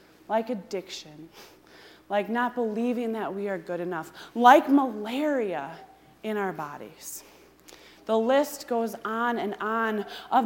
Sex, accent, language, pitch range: female, American, English, 200-270 Hz